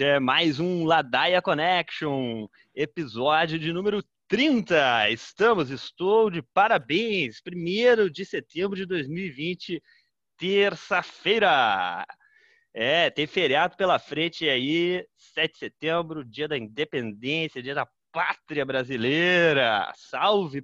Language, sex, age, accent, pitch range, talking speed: Portuguese, male, 30-49, Brazilian, 145-190 Hz, 105 wpm